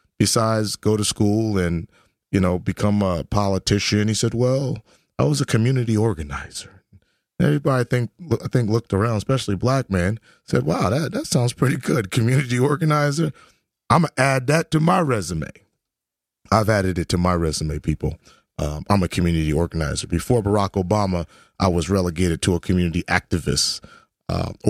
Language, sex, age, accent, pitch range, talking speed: English, male, 30-49, American, 85-110 Hz, 165 wpm